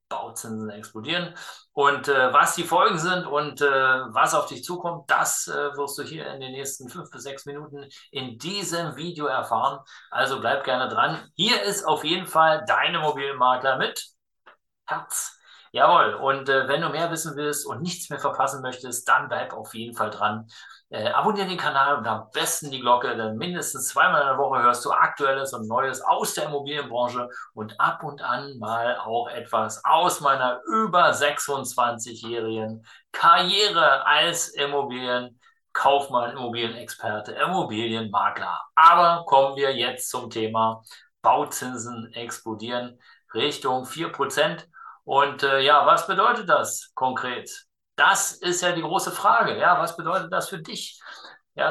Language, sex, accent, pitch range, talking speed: German, male, German, 125-170 Hz, 150 wpm